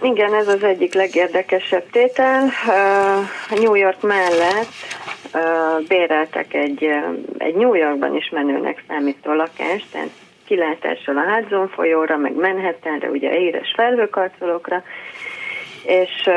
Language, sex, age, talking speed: Hungarian, female, 30-49, 105 wpm